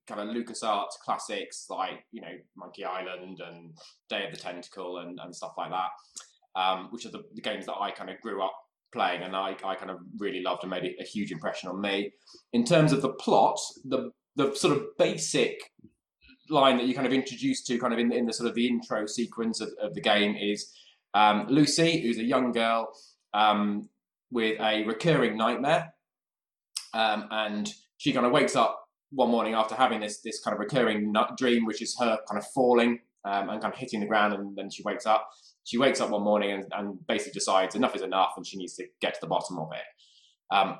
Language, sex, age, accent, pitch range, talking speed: English, male, 20-39, British, 105-125 Hz, 220 wpm